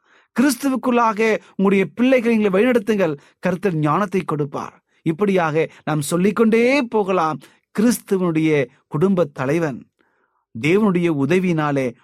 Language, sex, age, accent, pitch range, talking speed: Tamil, male, 30-49, native, 130-185 Hz, 85 wpm